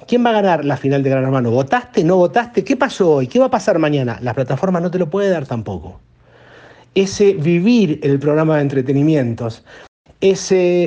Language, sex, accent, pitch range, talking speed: Spanish, male, Argentinian, 140-205 Hz, 195 wpm